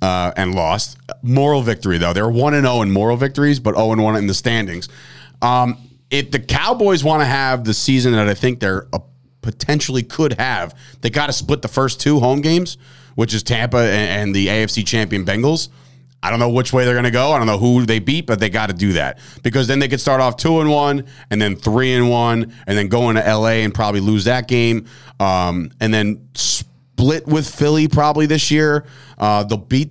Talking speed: 225 wpm